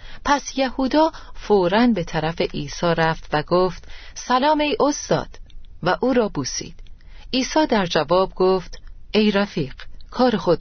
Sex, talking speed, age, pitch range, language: female, 135 wpm, 40-59, 160-225 Hz, Persian